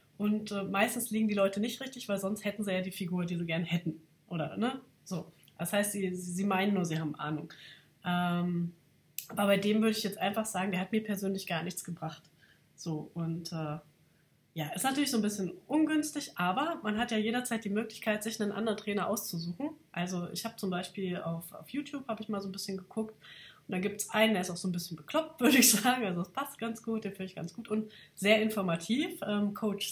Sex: female